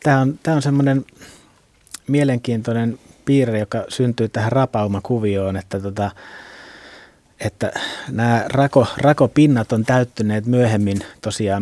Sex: male